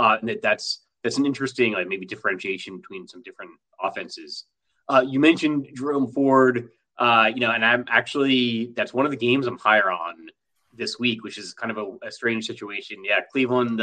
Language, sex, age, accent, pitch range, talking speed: English, male, 30-49, American, 110-145 Hz, 185 wpm